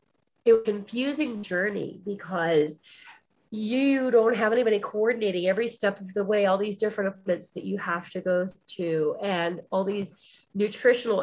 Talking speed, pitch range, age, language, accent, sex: 155 wpm, 180-220 Hz, 40-59, English, American, female